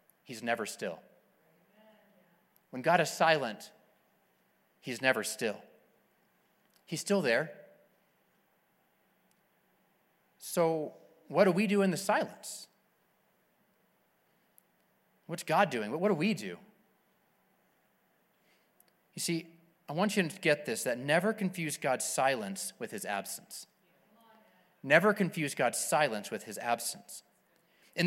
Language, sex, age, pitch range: English, male, 30-49, 160-205 Hz